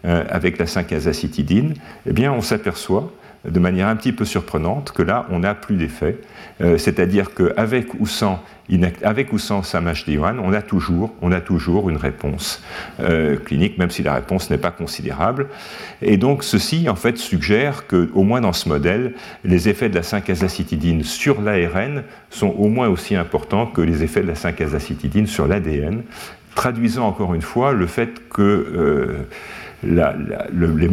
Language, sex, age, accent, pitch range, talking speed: French, male, 50-69, French, 85-105 Hz, 175 wpm